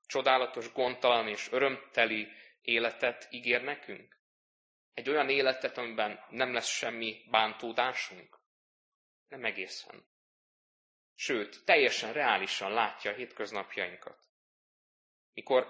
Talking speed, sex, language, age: 90 wpm, male, Hungarian, 20-39